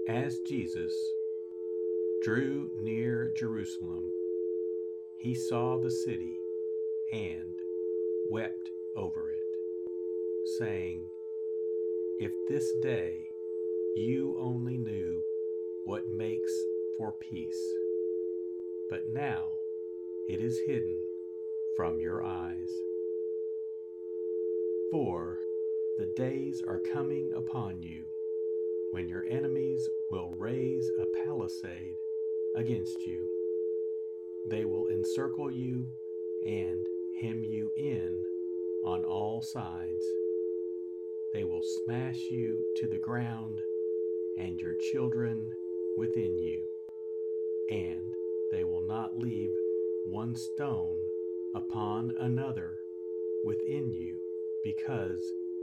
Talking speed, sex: 90 wpm, male